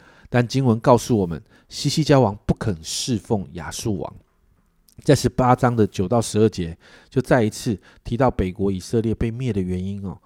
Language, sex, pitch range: Chinese, male, 100-140 Hz